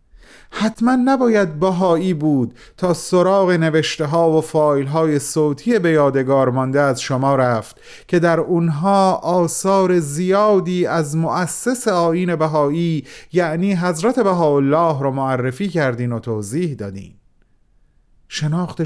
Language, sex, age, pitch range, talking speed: Persian, male, 30-49, 145-190 Hz, 120 wpm